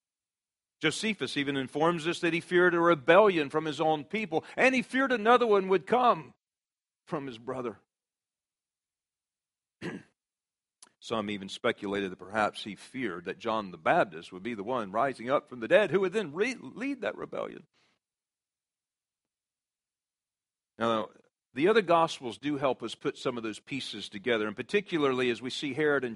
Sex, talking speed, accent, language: male, 160 wpm, American, English